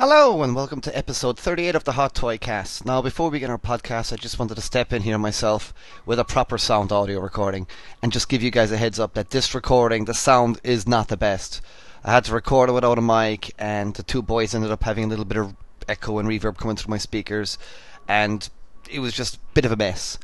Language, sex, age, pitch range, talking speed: English, male, 20-39, 105-130 Hz, 245 wpm